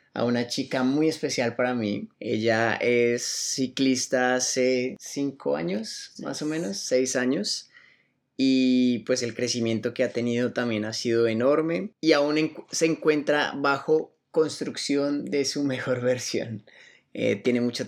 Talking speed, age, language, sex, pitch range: 140 wpm, 20-39, Spanish, male, 120-140 Hz